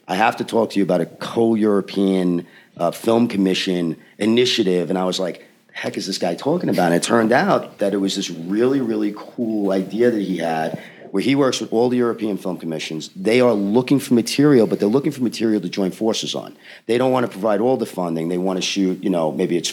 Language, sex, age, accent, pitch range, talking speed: English, male, 40-59, American, 90-115 Hz, 230 wpm